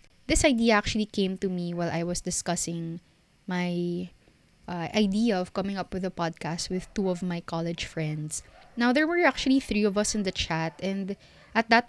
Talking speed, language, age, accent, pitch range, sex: 190 wpm, Filipino, 20-39, native, 180-230 Hz, female